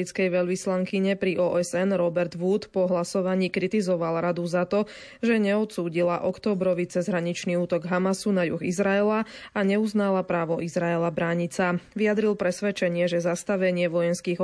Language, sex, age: Slovak, female, 20-39